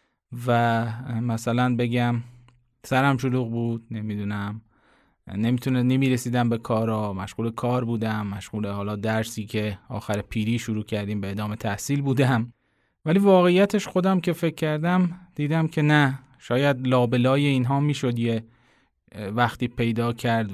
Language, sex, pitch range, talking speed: Persian, male, 115-135 Hz, 125 wpm